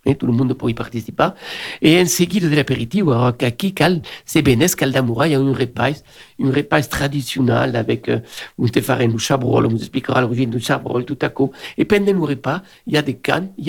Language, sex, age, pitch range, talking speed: French, male, 60-79, 130-180 Hz, 215 wpm